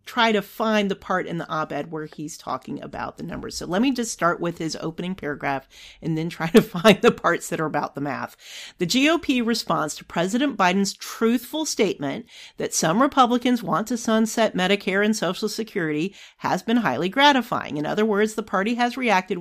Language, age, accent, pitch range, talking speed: English, 40-59, American, 175-250 Hz, 200 wpm